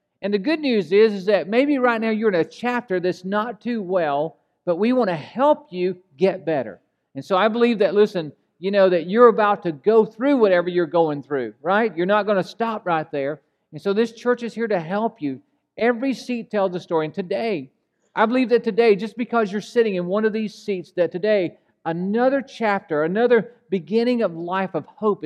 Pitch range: 175-225 Hz